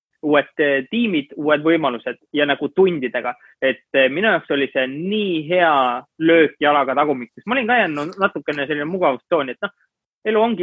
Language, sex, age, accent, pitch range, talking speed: English, male, 20-39, Finnish, 140-185 Hz, 160 wpm